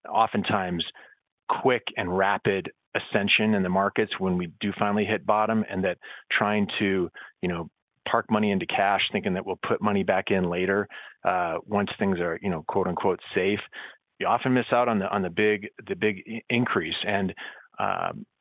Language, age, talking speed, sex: English, 30-49, 180 wpm, male